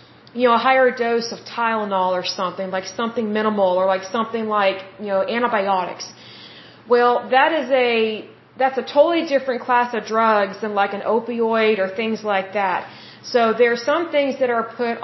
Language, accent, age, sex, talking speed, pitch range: Hindi, American, 40-59, female, 180 wpm, 220-260 Hz